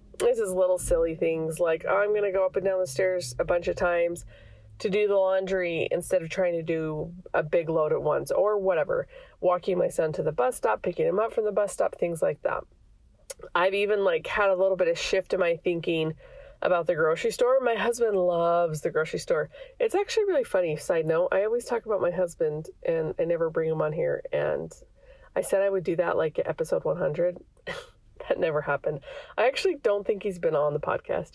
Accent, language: American, English